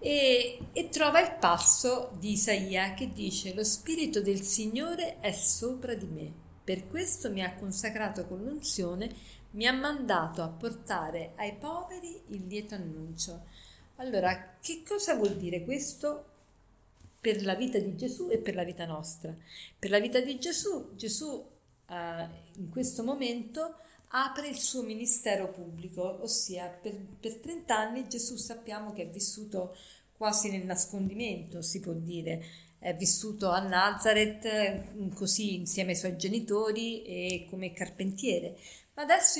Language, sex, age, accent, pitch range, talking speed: Italian, female, 50-69, native, 185-255 Hz, 145 wpm